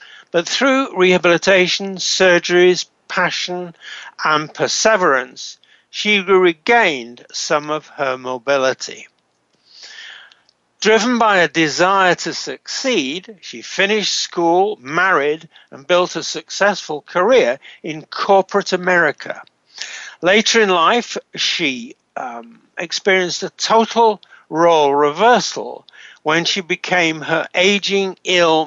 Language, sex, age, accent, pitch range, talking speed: English, male, 60-79, British, 155-200 Hz, 100 wpm